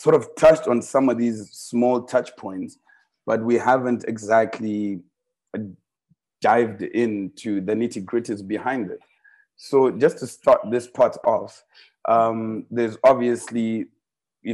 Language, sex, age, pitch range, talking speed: English, male, 30-49, 110-120 Hz, 130 wpm